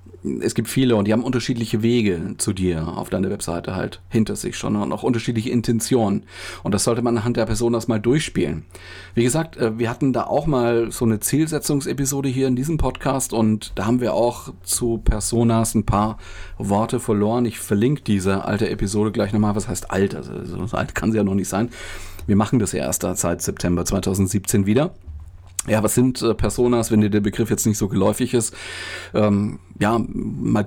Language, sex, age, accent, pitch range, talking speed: German, male, 40-59, German, 95-115 Hz, 190 wpm